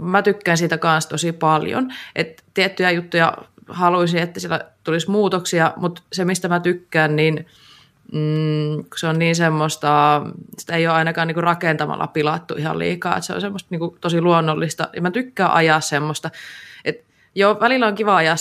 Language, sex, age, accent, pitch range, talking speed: Finnish, female, 20-39, native, 155-175 Hz, 165 wpm